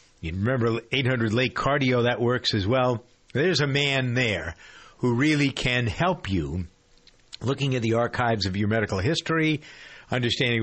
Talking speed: 150 wpm